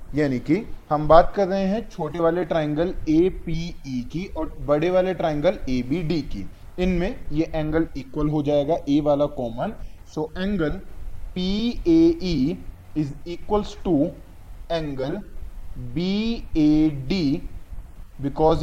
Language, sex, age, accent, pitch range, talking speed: Hindi, male, 30-49, native, 125-180 Hz, 120 wpm